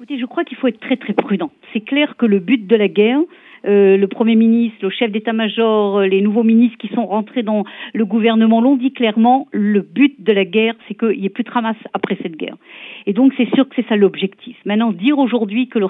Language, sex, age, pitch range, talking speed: French, female, 50-69, 205-250 Hz, 240 wpm